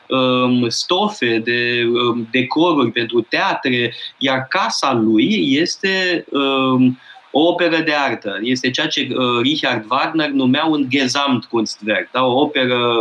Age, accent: 20-39, native